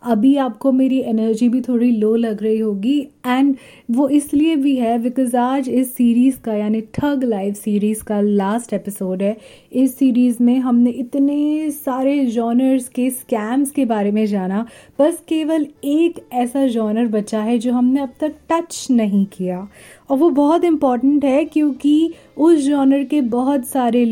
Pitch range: 225-275 Hz